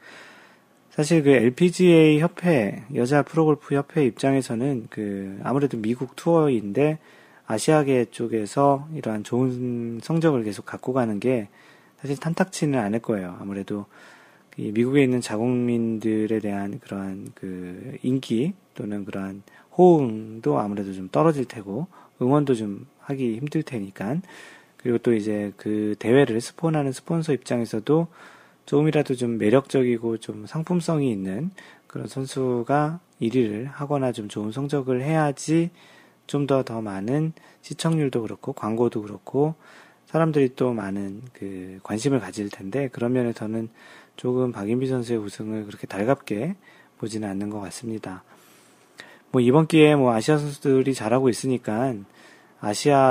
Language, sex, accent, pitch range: Korean, male, native, 110-145 Hz